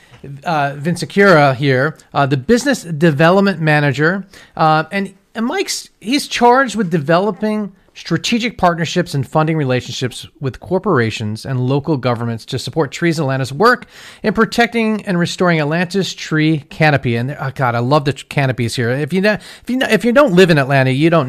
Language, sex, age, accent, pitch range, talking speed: English, male, 40-59, American, 135-190 Hz, 170 wpm